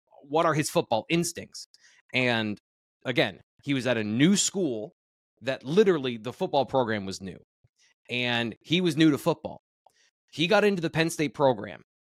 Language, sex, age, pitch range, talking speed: English, male, 20-39, 115-160 Hz, 165 wpm